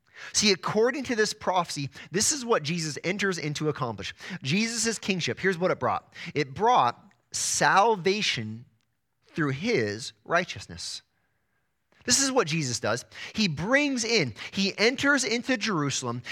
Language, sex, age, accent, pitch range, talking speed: English, male, 30-49, American, 155-225 Hz, 130 wpm